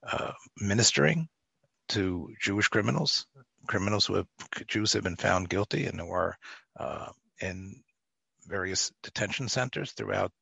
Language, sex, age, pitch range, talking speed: English, male, 60-79, 95-125 Hz, 125 wpm